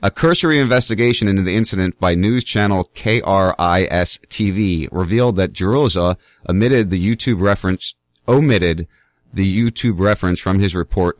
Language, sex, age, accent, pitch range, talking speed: English, male, 30-49, American, 90-115 Hz, 130 wpm